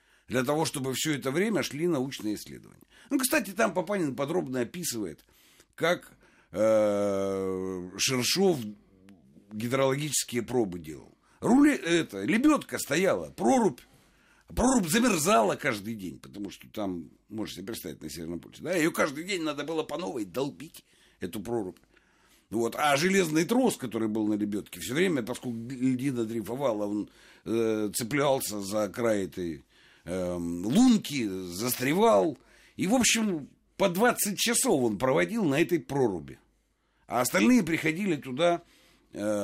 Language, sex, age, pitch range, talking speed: Russian, male, 60-79, 105-170 Hz, 130 wpm